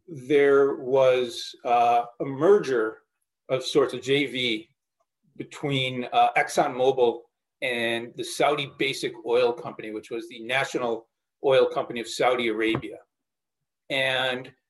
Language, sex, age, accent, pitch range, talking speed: English, male, 40-59, American, 120-170 Hz, 115 wpm